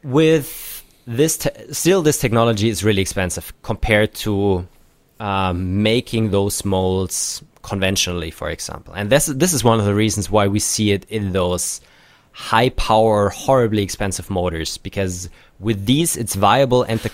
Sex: male